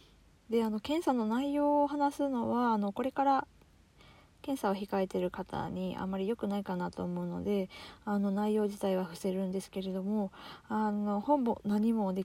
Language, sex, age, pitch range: Japanese, female, 20-39, 175-220 Hz